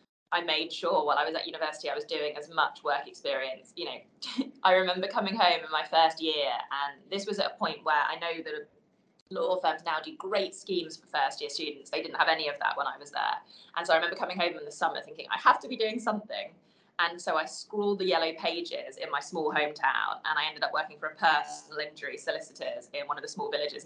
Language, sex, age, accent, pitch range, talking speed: English, female, 20-39, British, 160-220 Hz, 245 wpm